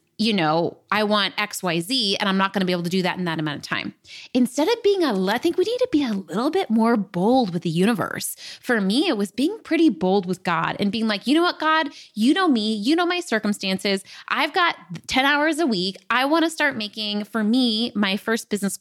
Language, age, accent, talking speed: English, 20-39, American, 245 wpm